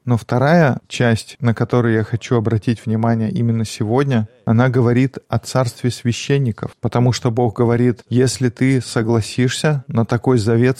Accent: native